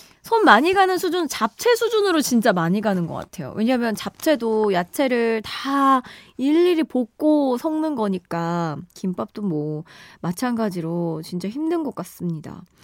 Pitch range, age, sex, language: 185-295 Hz, 20-39, female, Korean